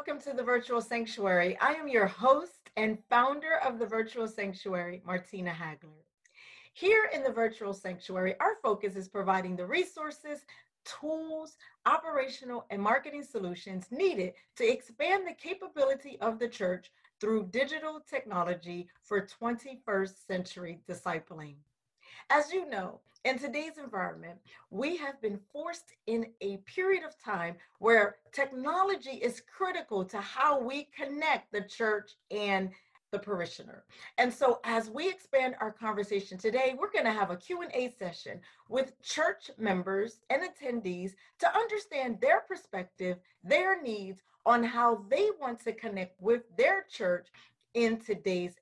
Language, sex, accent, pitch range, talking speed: English, female, American, 195-285 Hz, 140 wpm